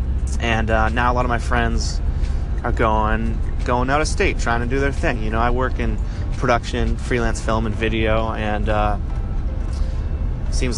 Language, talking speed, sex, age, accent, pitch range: English, 180 wpm, male, 20-39, American, 85-115 Hz